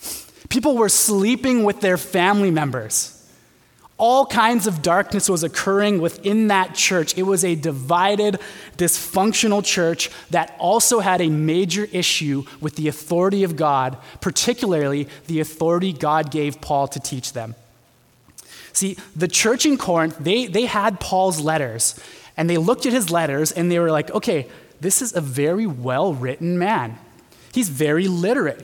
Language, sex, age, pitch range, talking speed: English, male, 20-39, 155-210 Hz, 150 wpm